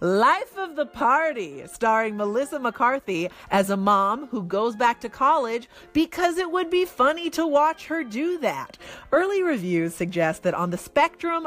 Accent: American